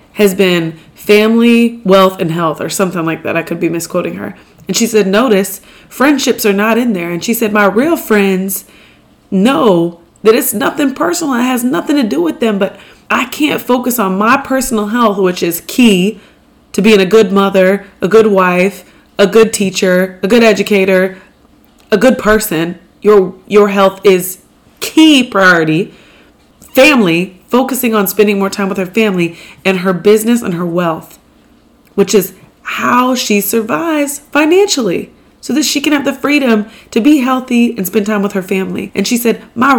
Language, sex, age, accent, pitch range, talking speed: English, female, 30-49, American, 195-255 Hz, 180 wpm